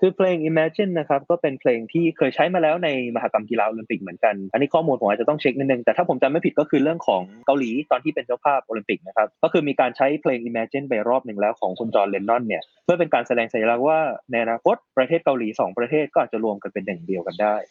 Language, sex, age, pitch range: Thai, male, 20-39, 120-165 Hz